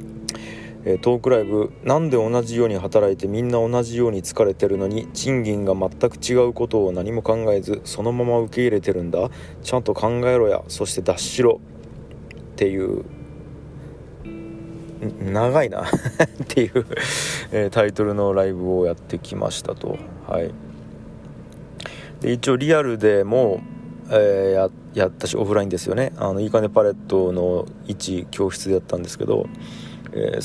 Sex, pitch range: male, 95-125 Hz